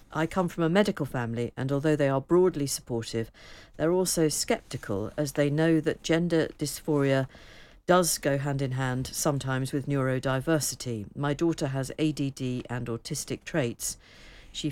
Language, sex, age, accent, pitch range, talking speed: English, female, 50-69, British, 125-150 Hz, 150 wpm